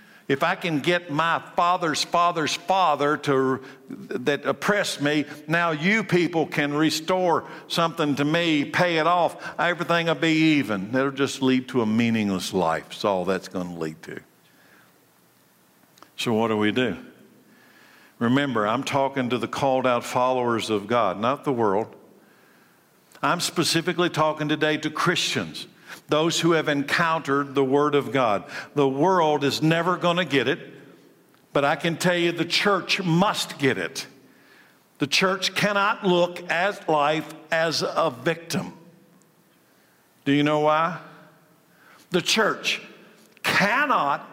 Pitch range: 140-175 Hz